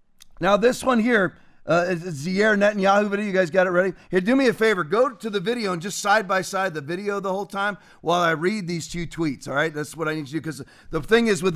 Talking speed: 275 wpm